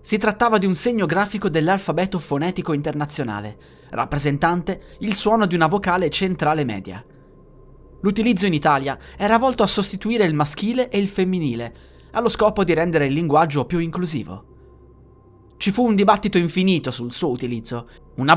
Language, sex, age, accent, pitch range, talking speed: Italian, male, 20-39, native, 130-195 Hz, 150 wpm